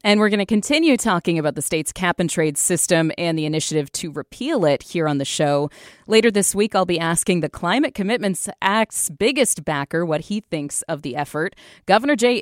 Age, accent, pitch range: 30-49, American, 155-205 Hz